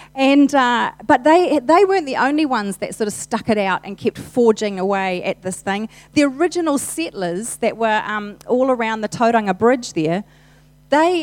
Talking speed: 185 wpm